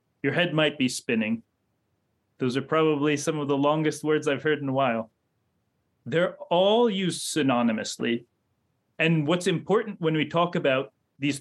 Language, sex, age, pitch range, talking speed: English, male, 30-49, 125-170 Hz, 160 wpm